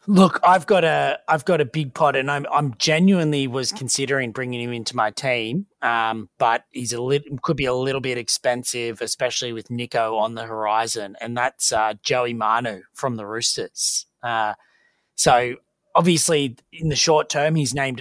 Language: English